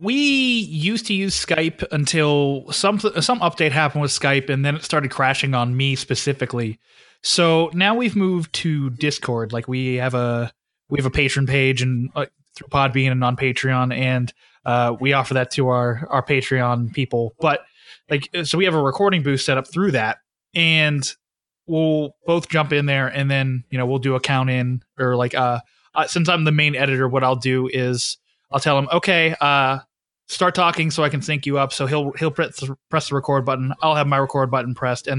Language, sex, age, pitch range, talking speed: English, male, 20-39, 130-155 Hz, 205 wpm